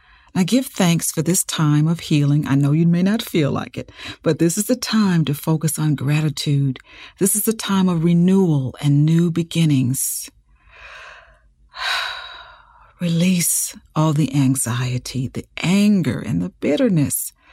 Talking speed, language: 145 wpm, English